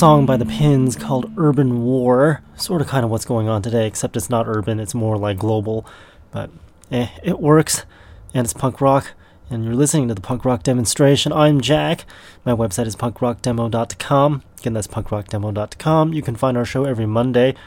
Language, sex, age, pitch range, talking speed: English, male, 30-49, 105-130 Hz, 185 wpm